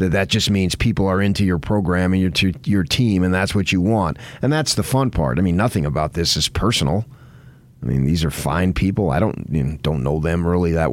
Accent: American